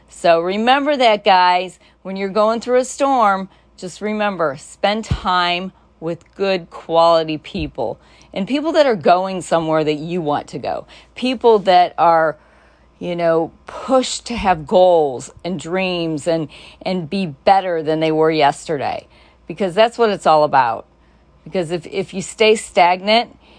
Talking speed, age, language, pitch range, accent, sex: 155 wpm, 40-59, English, 170-220 Hz, American, female